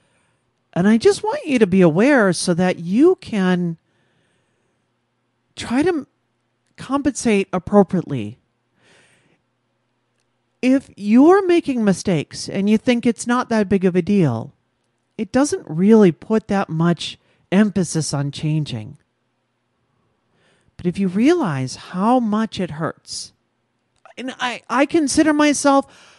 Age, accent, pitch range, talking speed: 40-59, American, 160-230 Hz, 120 wpm